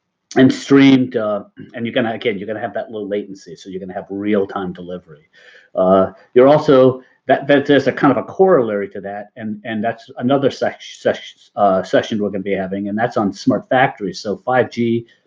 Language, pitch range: English, 95-130 Hz